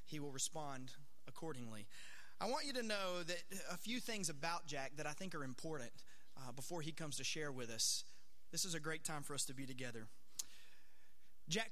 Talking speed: 200 wpm